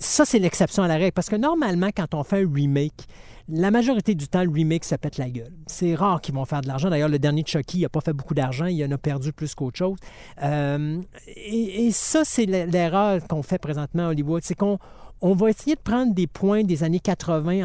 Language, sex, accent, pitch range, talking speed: French, male, Canadian, 155-200 Hz, 240 wpm